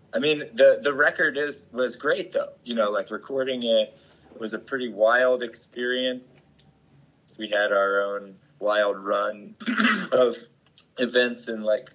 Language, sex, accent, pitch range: English, male, American, 95-125 Hz